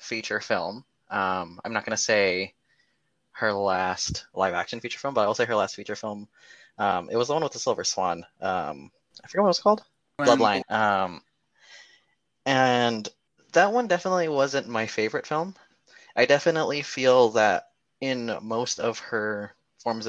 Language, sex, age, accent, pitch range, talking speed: English, male, 20-39, American, 100-135 Hz, 165 wpm